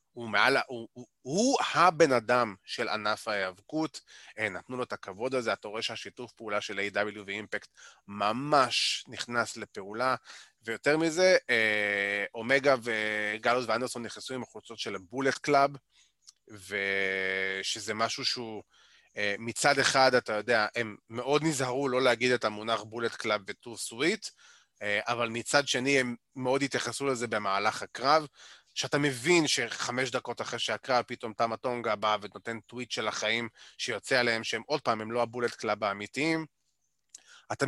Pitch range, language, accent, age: 110-130 Hz, Hebrew, native, 30-49